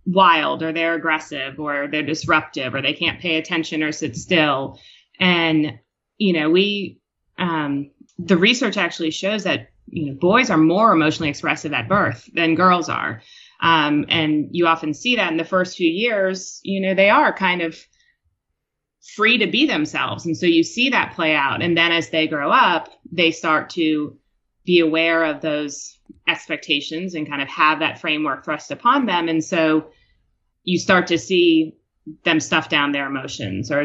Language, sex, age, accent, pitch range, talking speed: English, female, 30-49, American, 150-180 Hz, 175 wpm